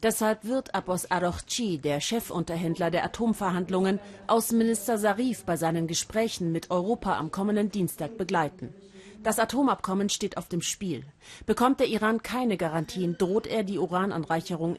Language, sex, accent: German, female, German